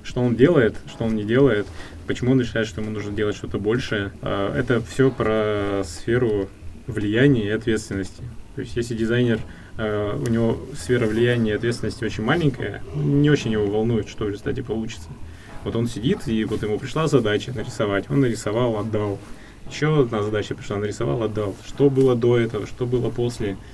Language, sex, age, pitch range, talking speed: Russian, male, 20-39, 105-125 Hz, 170 wpm